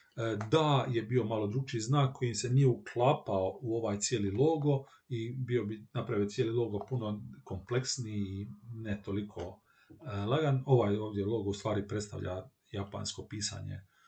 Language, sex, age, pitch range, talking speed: Croatian, male, 40-59, 115-145 Hz, 145 wpm